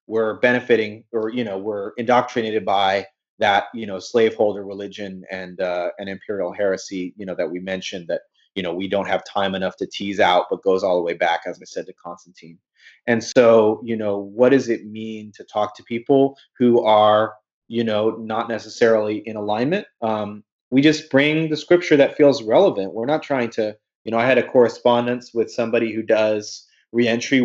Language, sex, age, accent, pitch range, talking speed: English, male, 30-49, American, 105-125 Hz, 195 wpm